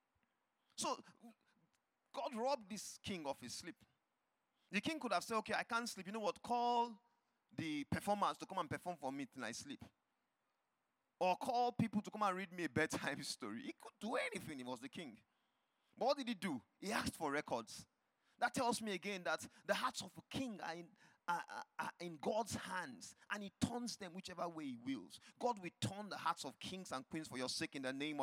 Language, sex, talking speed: English, male, 215 wpm